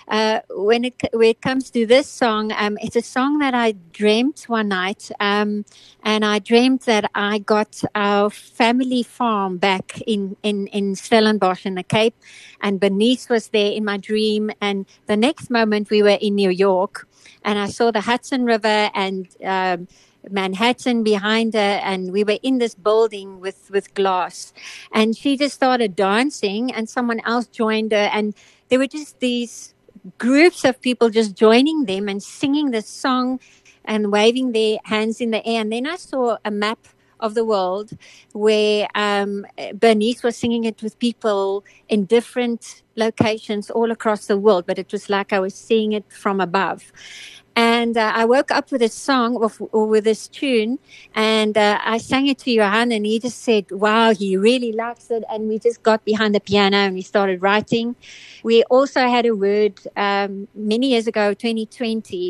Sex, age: female, 50-69